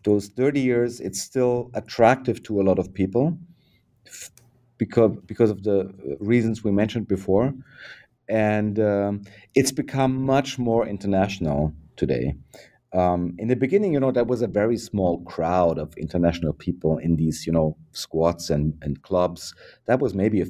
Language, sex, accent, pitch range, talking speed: English, male, German, 95-125 Hz, 160 wpm